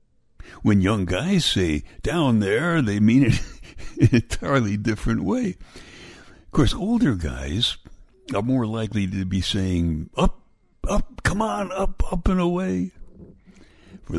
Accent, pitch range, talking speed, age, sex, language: American, 85-115 Hz, 140 wpm, 60-79, male, English